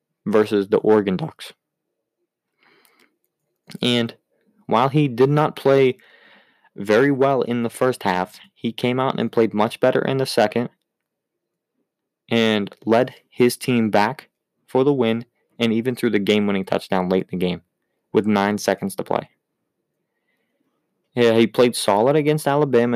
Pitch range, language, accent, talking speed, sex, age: 110-140 Hz, English, American, 145 wpm, male, 20-39